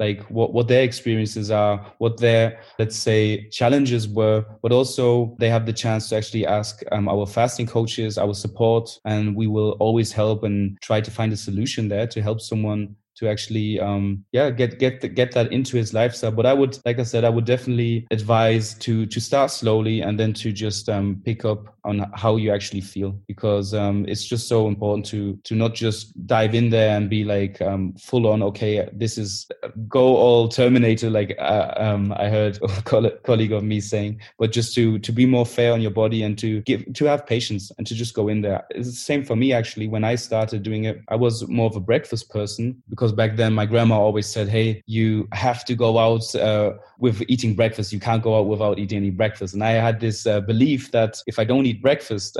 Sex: male